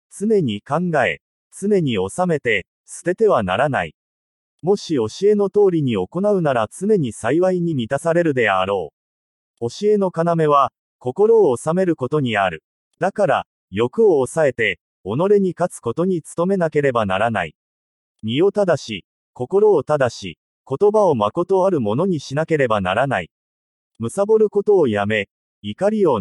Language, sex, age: English, male, 30-49